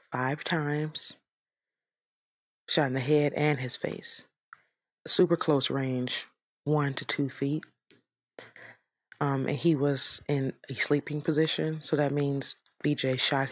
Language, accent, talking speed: English, American, 135 wpm